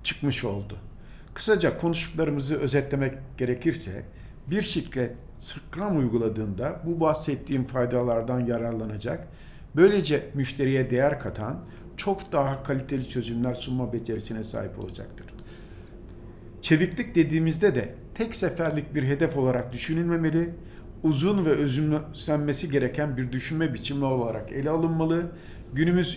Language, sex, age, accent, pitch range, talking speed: Turkish, male, 50-69, native, 120-155 Hz, 105 wpm